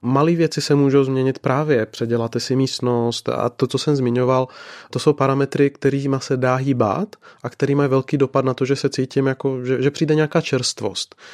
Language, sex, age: Czech, male, 20-39